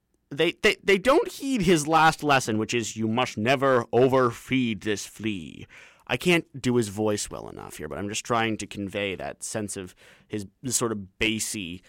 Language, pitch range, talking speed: English, 110-140 Hz, 185 wpm